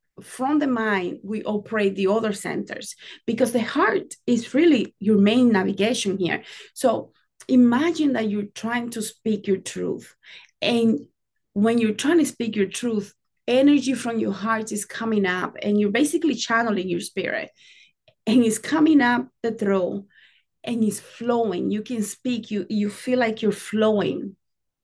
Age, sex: 30-49, female